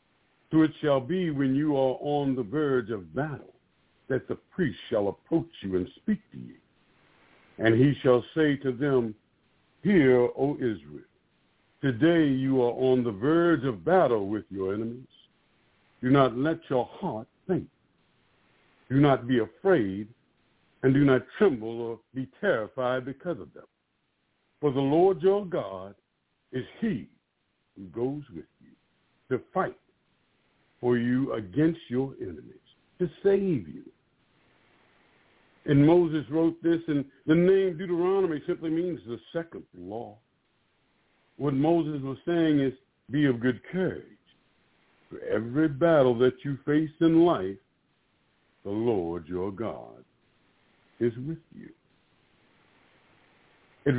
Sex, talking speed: male, 135 wpm